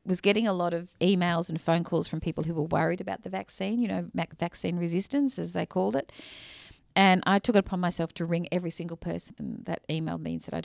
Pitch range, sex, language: 160-185 Hz, female, English